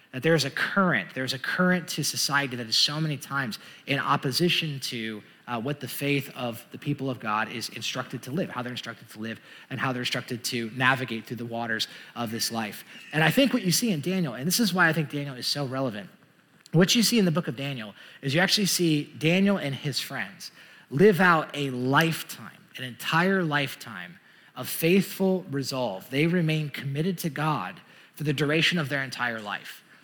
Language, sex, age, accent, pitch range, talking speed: English, male, 30-49, American, 130-165 Hz, 205 wpm